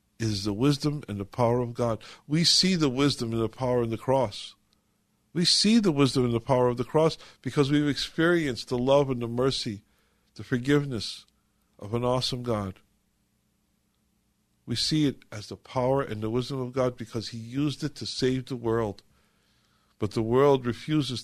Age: 50-69